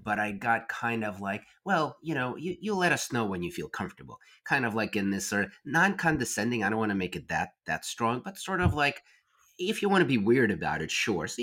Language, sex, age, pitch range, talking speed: English, male, 30-49, 95-115 Hz, 255 wpm